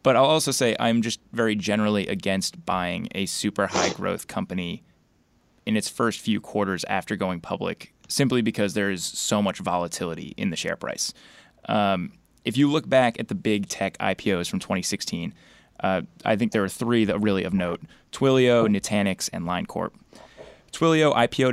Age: 20-39